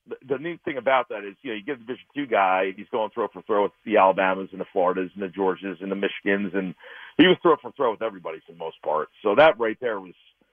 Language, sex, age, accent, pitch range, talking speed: English, male, 50-69, American, 100-130 Hz, 280 wpm